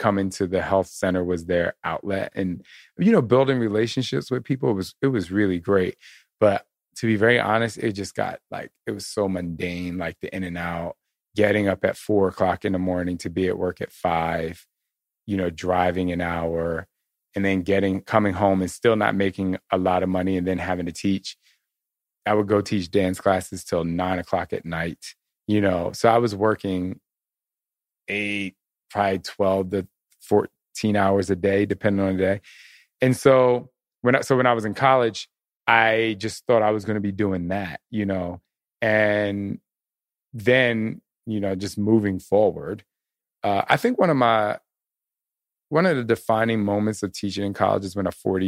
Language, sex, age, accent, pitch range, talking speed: English, male, 30-49, American, 90-110 Hz, 190 wpm